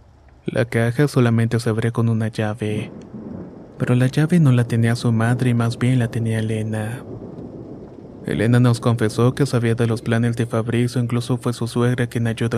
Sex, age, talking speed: male, 30-49, 180 wpm